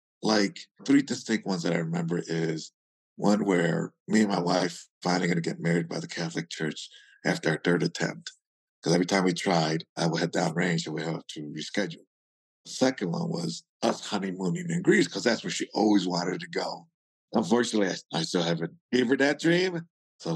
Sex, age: male, 50-69